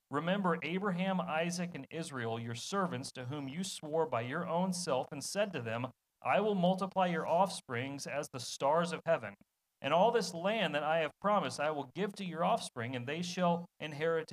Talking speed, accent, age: 195 wpm, American, 40-59